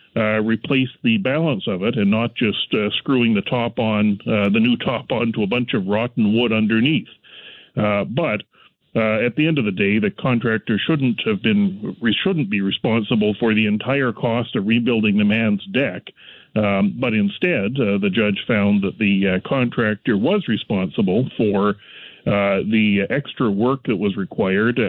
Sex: male